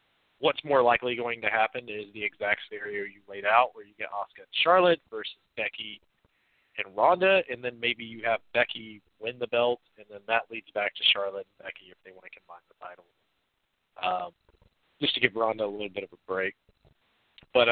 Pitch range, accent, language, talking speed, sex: 105-135 Hz, American, English, 205 wpm, male